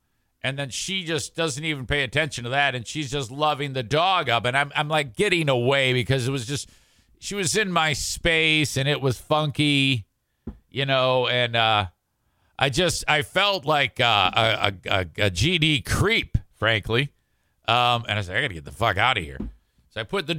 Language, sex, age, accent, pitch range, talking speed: English, male, 50-69, American, 120-155 Hz, 205 wpm